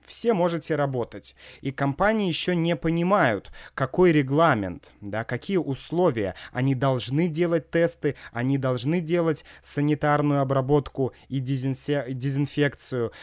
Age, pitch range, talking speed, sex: 30-49, 115-160 Hz, 110 wpm, male